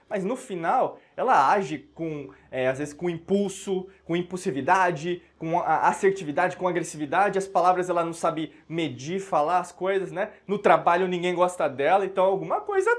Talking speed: 160 wpm